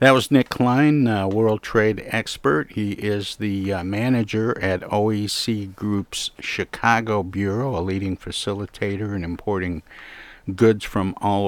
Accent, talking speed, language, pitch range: American, 135 wpm, English, 90-110 Hz